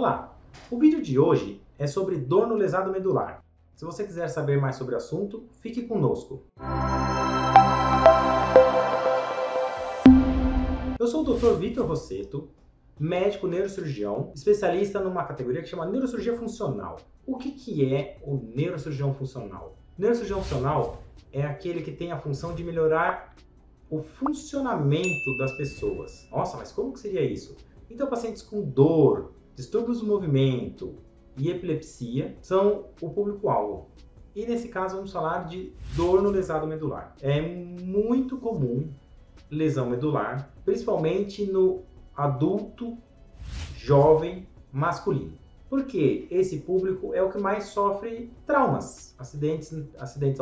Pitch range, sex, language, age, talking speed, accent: 130-205 Hz, male, Portuguese, 30-49, 125 wpm, Brazilian